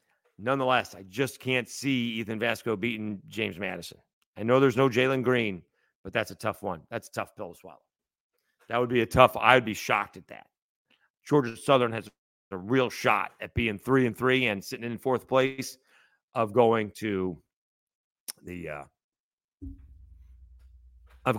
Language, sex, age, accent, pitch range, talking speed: English, male, 40-59, American, 95-125 Hz, 165 wpm